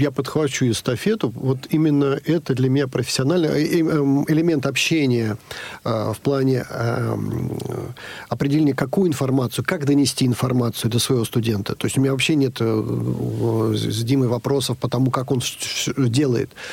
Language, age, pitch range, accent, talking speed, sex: Russian, 50-69, 125-145 Hz, native, 130 wpm, male